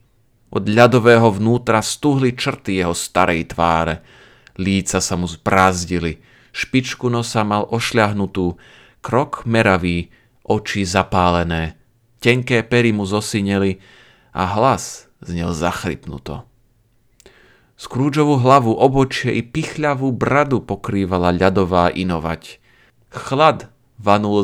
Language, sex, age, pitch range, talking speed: Slovak, male, 30-49, 95-120 Hz, 100 wpm